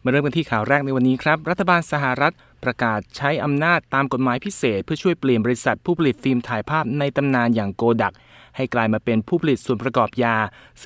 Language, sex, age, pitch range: Thai, male, 20-39, 115-145 Hz